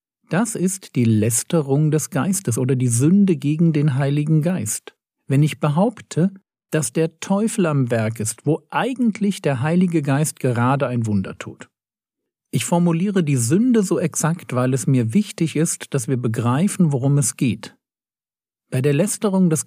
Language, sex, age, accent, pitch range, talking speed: German, male, 50-69, German, 135-180 Hz, 160 wpm